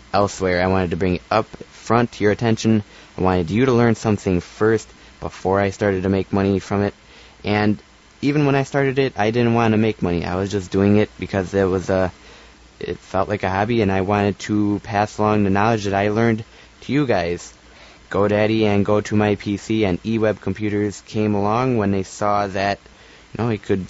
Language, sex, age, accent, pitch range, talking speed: English, male, 20-39, American, 95-115 Hz, 215 wpm